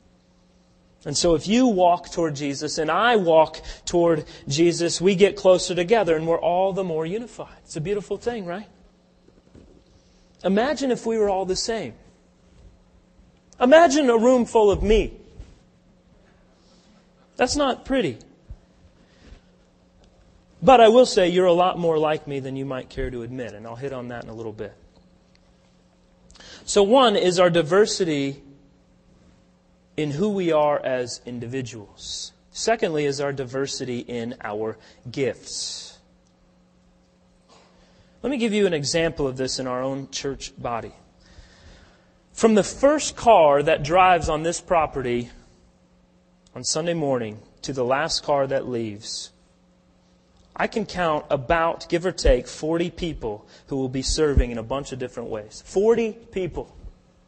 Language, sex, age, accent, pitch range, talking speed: English, male, 30-49, American, 130-195 Hz, 145 wpm